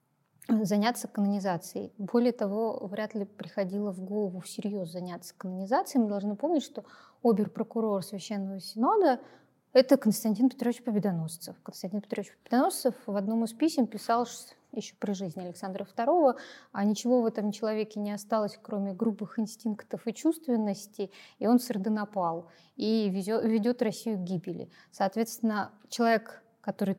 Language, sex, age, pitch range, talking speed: Russian, female, 20-39, 200-240 Hz, 135 wpm